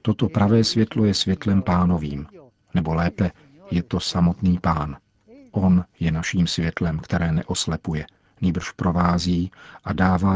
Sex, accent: male, native